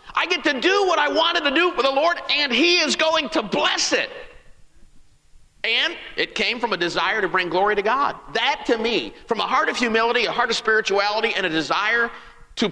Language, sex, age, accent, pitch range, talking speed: English, male, 50-69, American, 160-250 Hz, 210 wpm